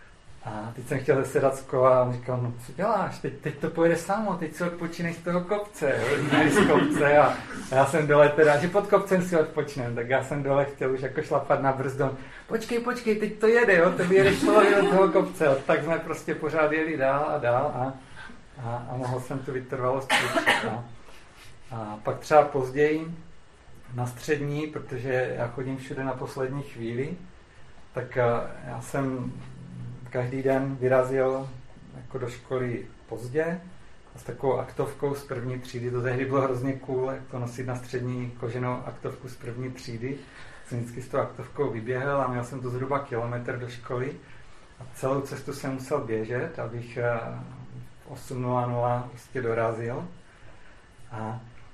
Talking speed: 165 wpm